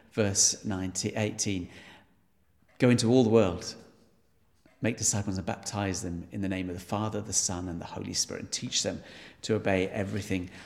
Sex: male